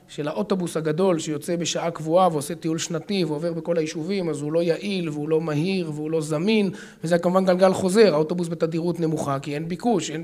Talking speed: 195 wpm